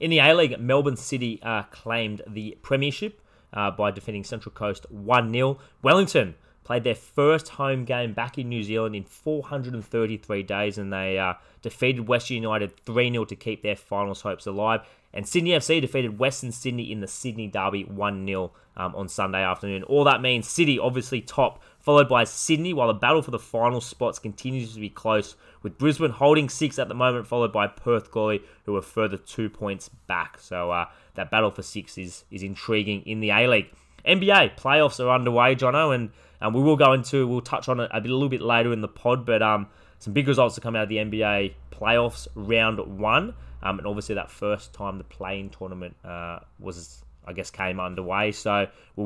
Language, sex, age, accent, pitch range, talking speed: English, male, 20-39, Australian, 100-125 Hz, 195 wpm